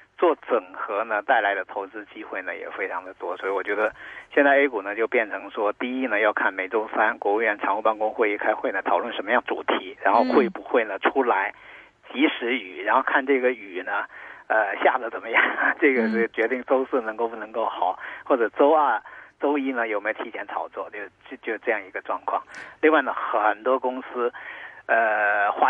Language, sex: Chinese, male